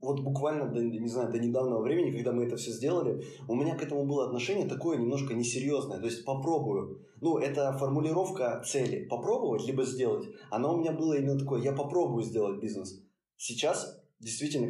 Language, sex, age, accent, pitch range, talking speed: Russian, male, 20-39, native, 120-140 Hz, 175 wpm